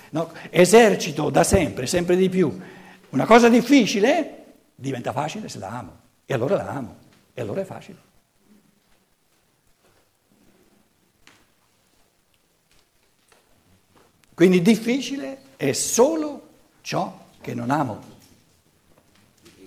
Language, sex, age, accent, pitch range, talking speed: Italian, male, 60-79, native, 120-185 Hz, 95 wpm